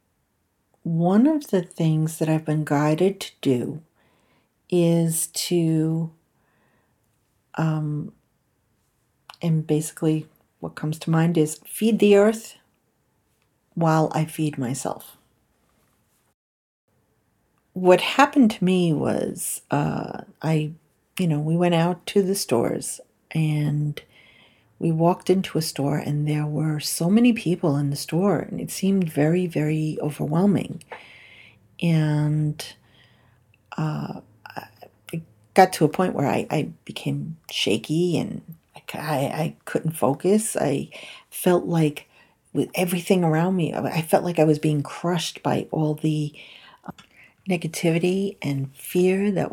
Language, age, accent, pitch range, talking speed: English, 50-69, American, 145-180 Hz, 120 wpm